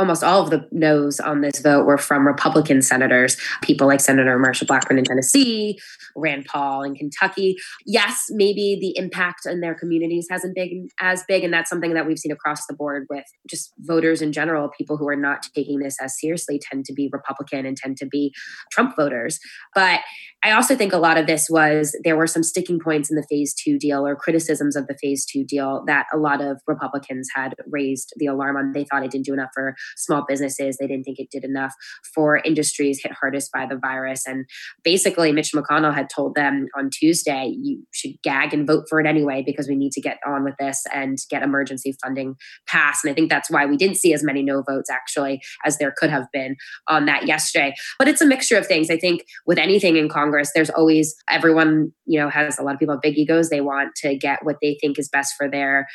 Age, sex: 20-39, female